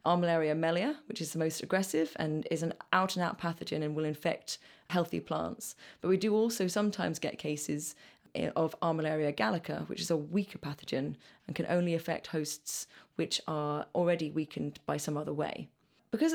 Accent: British